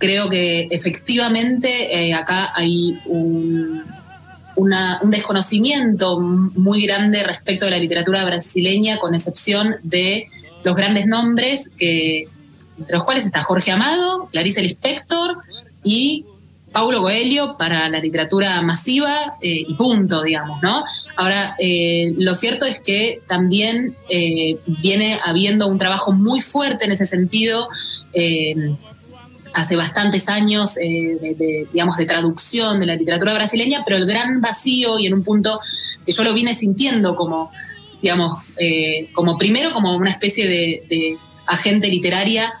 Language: Spanish